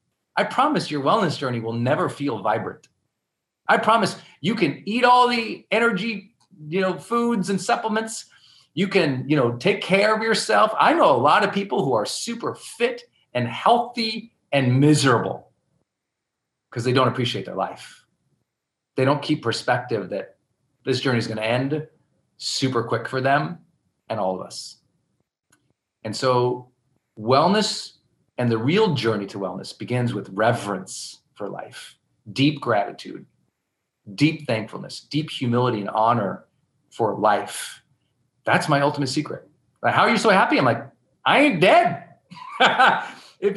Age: 40-59